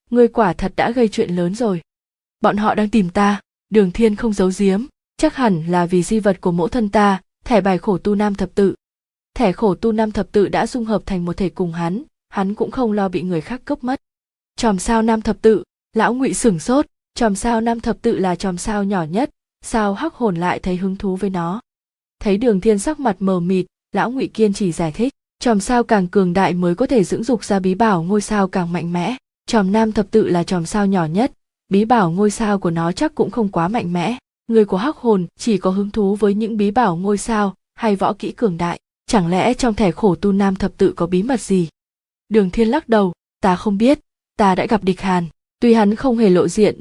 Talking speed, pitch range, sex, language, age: 240 wpm, 185-225 Hz, female, Vietnamese, 20-39